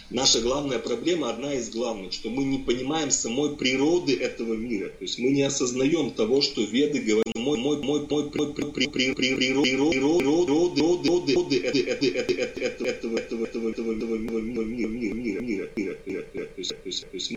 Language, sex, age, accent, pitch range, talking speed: Russian, male, 30-49, native, 120-160 Hz, 90 wpm